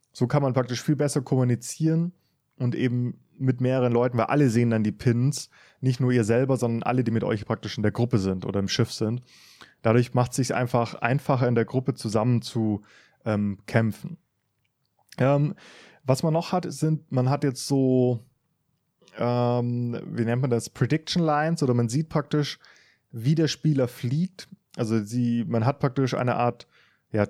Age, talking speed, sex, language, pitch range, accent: 20-39, 180 wpm, male, English, 115-145 Hz, German